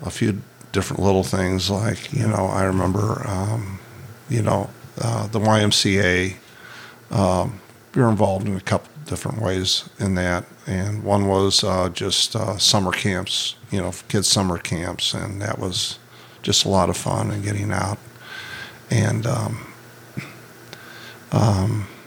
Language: English